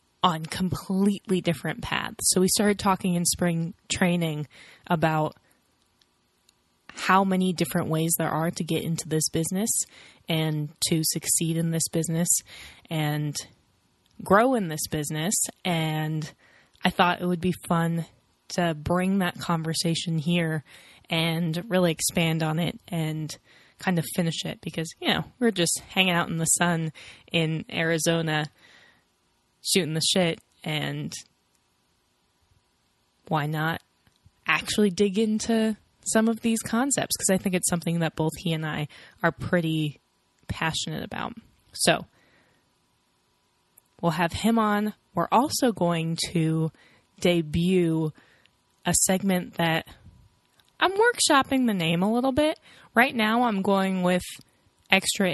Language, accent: English, American